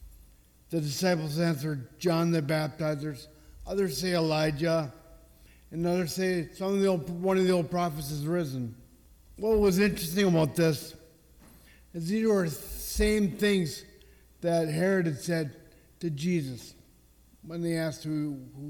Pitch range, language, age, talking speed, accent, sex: 125-180 Hz, English, 50-69, 140 wpm, American, male